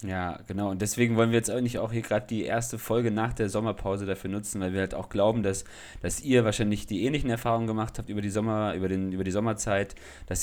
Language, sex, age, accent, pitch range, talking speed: German, male, 30-49, German, 95-110 Hz, 240 wpm